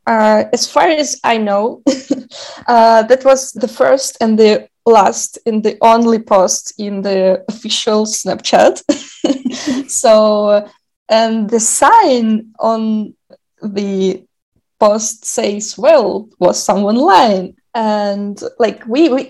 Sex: female